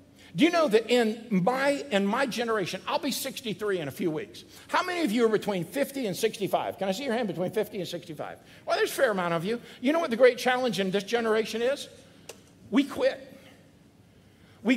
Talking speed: 220 wpm